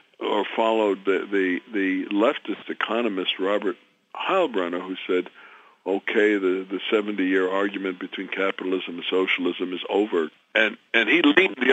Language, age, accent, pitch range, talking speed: English, 60-79, American, 95-125 Hz, 145 wpm